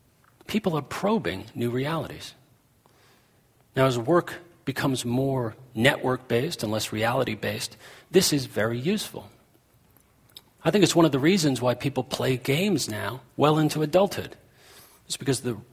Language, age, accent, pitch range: English, 40-59, American, 115-140 Hz